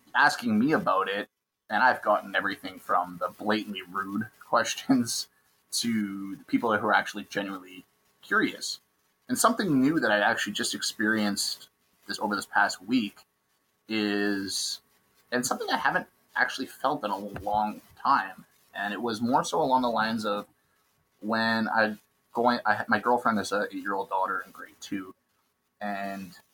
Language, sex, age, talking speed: English, male, 30-49, 160 wpm